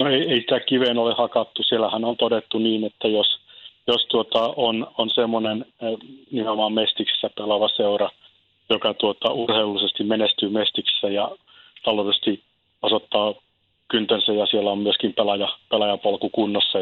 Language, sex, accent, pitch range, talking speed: Finnish, male, native, 100-115 Hz, 130 wpm